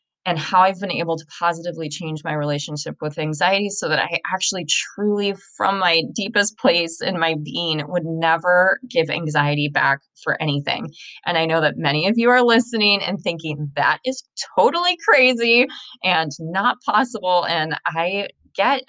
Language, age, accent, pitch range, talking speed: English, 20-39, American, 155-210 Hz, 165 wpm